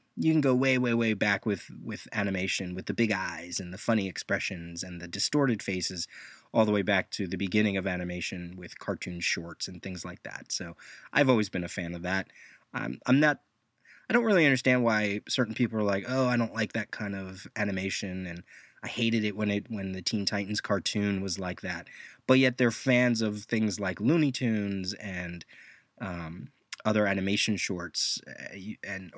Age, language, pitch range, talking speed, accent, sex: 20-39, English, 95-125 Hz, 195 wpm, American, male